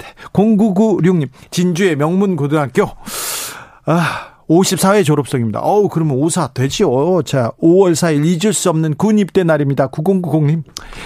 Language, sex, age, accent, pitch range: Korean, male, 40-59, native, 135-175 Hz